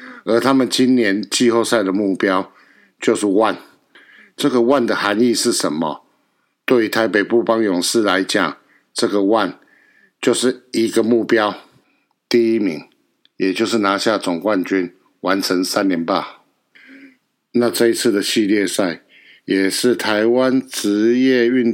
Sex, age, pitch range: male, 60-79, 95-120 Hz